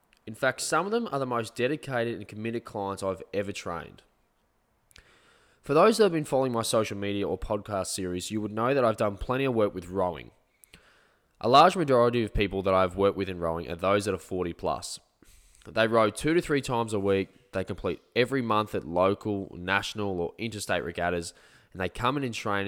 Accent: Australian